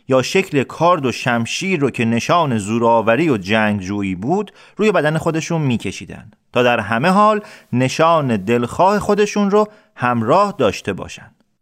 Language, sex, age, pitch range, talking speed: Persian, male, 40-59, 115-185 Hz, 145 wpm